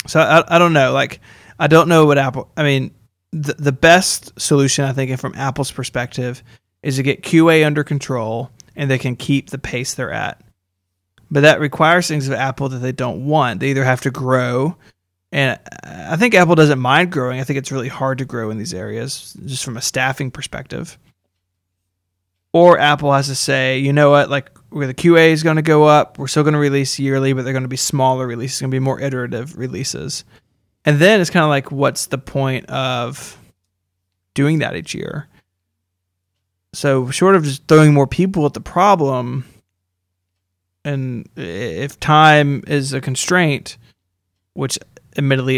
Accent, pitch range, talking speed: American, 120-150 Hz, 185 wpm